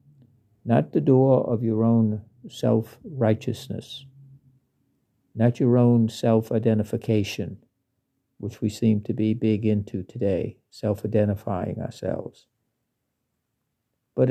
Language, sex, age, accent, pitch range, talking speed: English, male, 60-79, American, 110-120 Hz, 105 wpm